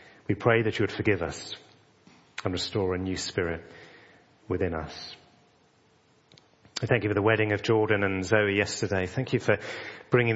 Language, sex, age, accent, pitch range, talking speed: English, male, 30-49, British, 100-115 Hz, 170 wpm